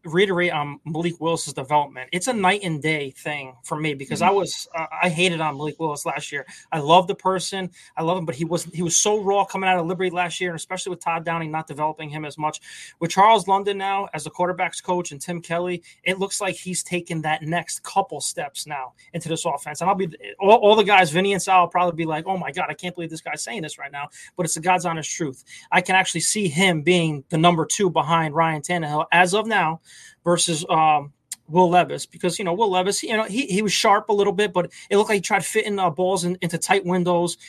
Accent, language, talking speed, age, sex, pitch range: American, English, 250 wpm, 20-39, male, 160-195 Hz